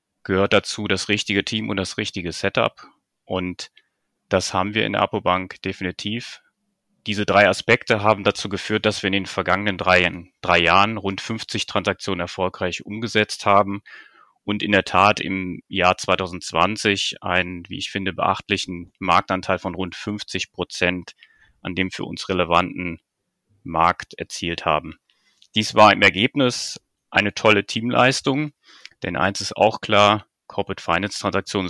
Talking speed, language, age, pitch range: 140 wpm, German, 30-49, 90-100 Hz